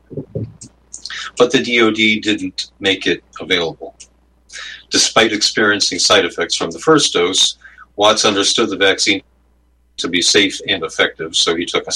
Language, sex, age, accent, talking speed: English, male, 50-69, American, 140 wpm